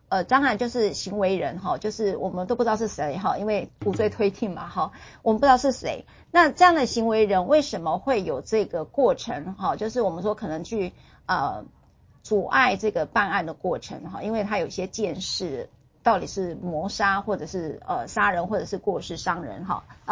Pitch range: 190-230 Hz